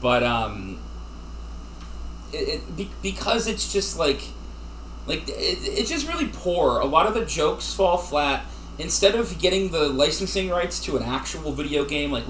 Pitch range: 115-150 Hz